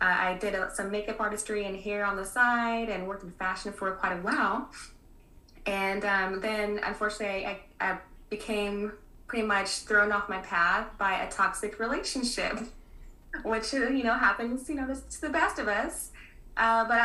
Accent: American